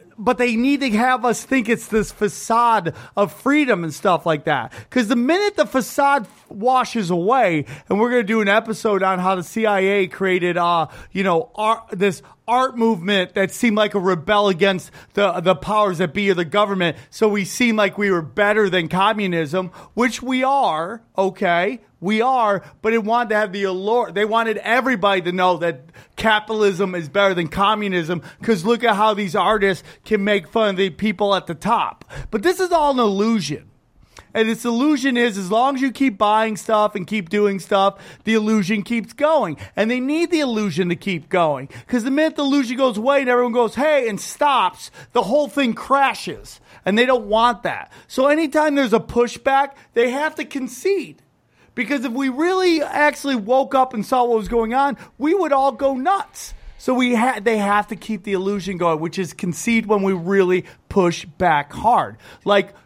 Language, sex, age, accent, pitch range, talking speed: English, male, 30-49, American, 190-250 Hz, 195 wpm